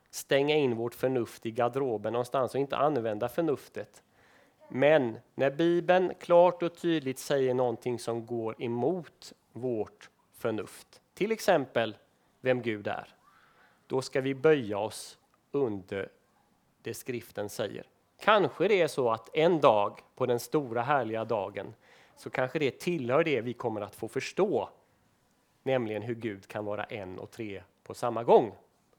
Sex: male